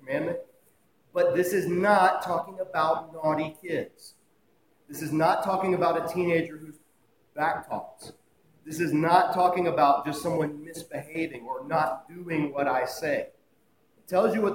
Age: 40-59